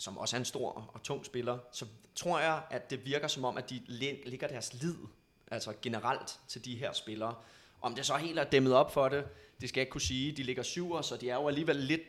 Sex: male